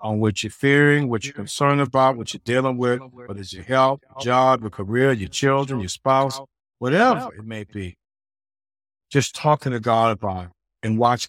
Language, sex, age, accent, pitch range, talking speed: English, male, 60-79, American, 115-185 Hz, 190 wpm